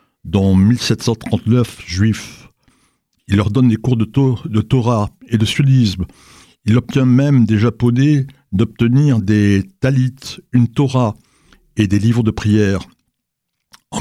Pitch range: 105-130 Hz